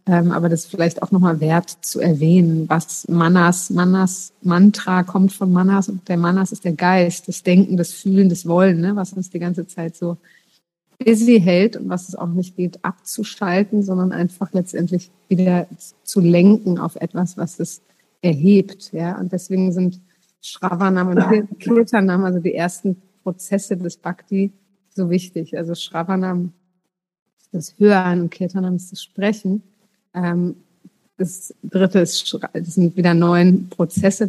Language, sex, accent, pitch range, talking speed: German, female, German, 175-195 Hz, 150 wpm